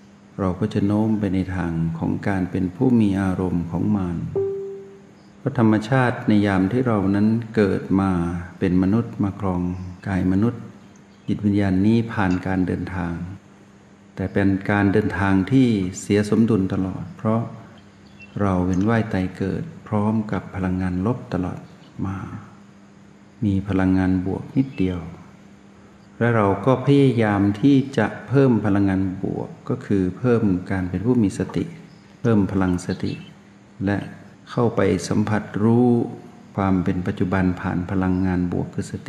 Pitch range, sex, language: 95-110 Hz, male, Thai